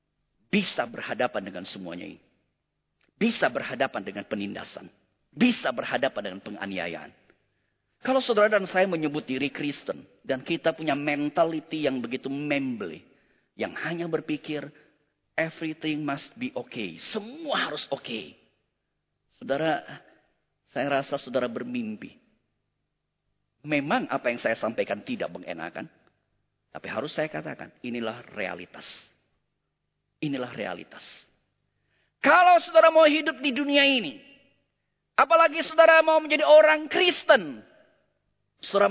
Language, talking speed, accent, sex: Indonesian, 110 wpm, native, male